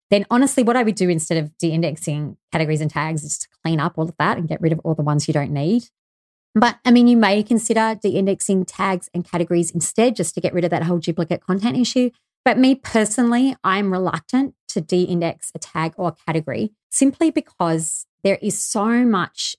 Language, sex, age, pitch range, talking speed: English, female, 30-49, 160-200 Hz, 210 wpm